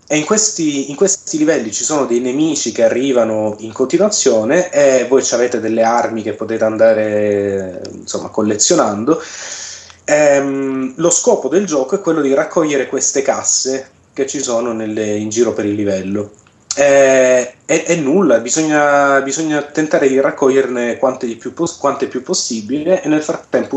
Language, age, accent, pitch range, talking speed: Italian, 30-49, native, 110-140 Hz, 150 wpm